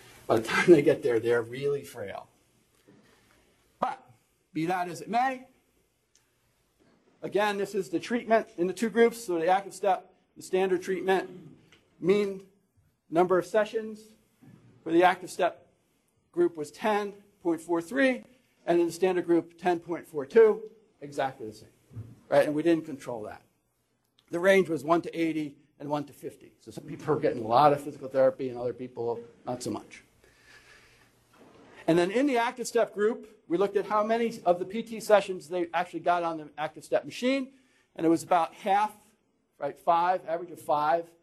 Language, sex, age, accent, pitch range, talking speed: English, male, 50-69, American, 145-195 Hz, 170 wpm